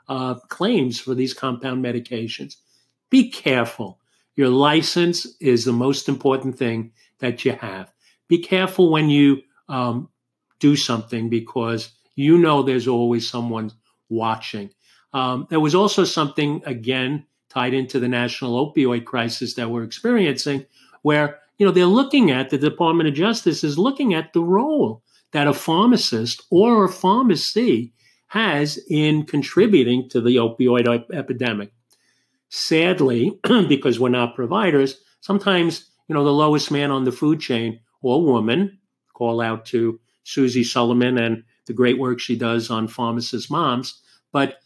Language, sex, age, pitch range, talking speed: English, male, 50-69, 120-150 Hz, 145 wpm